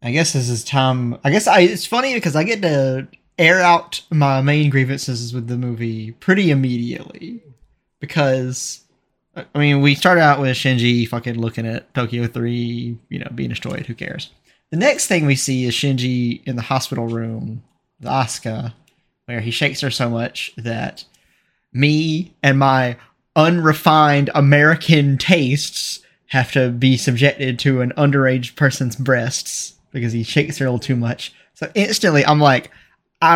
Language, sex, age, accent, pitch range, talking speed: English, male, 20-39, American, 125-165 Hz, 165 wpm